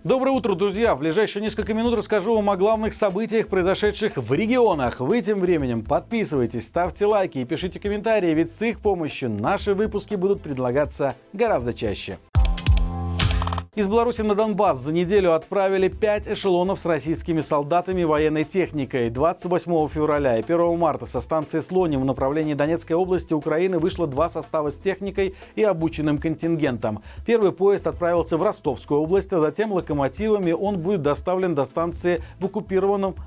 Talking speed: 155 wpm